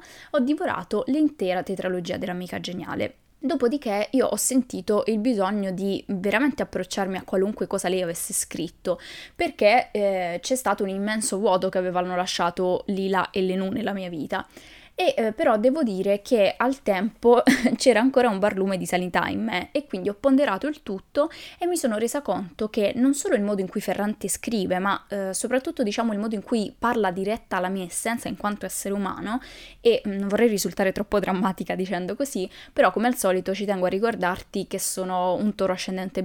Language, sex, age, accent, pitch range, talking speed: Italian, female, 10-29, native, 190-250 Hz, 185 wpm